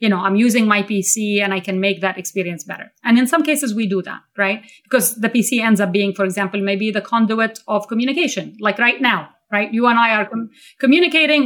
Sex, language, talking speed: female, English, 225 wpm